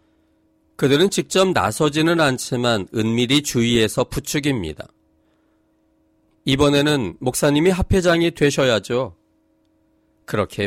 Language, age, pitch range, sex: Korean, 40-59, 100-150 Hz, male